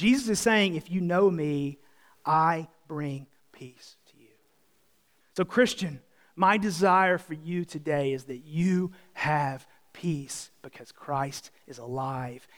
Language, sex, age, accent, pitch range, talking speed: English, male, 30-49, American, 155-215 Hz, 135 wpm